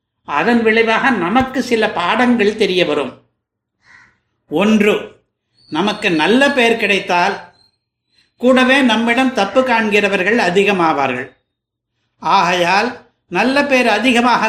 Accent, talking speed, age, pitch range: native, 85 wpm, 60-79, 180-235 Hz